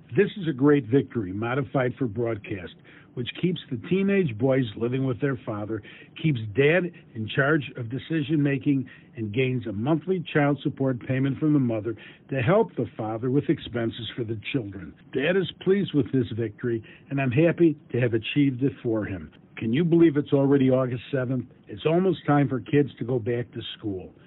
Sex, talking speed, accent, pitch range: male, 185 wpm, American, 120-160 Hz